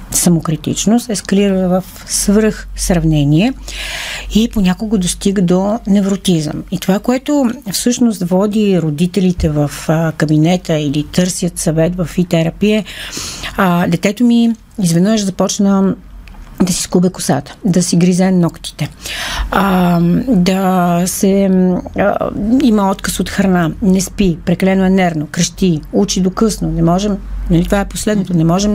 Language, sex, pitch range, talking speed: Bulgarian, female, 180-215 Hz, 125 wpm